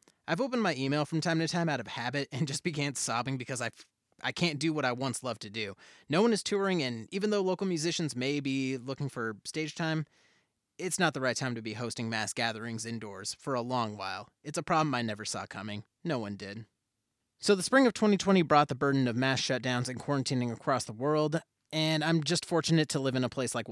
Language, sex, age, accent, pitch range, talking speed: English, male, 30-49, American, 120-155 Hz, 235 wpm